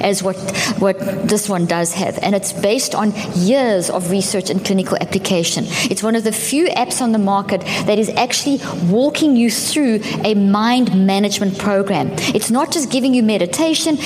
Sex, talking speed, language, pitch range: female, 180 wpm, English, 195-245 Hz